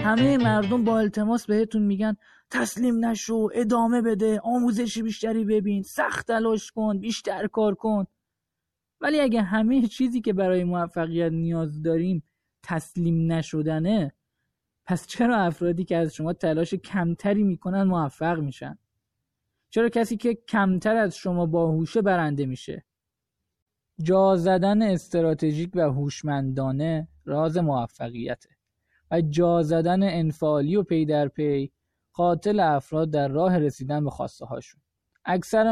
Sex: male